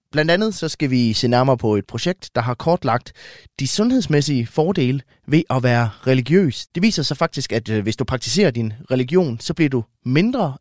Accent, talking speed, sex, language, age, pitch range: native, 190 wpm, male, Danish, 20-39, 120-160 Hz